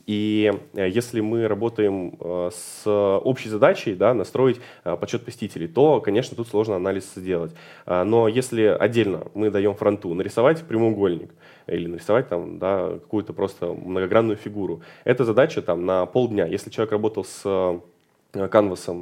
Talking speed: 125 wpm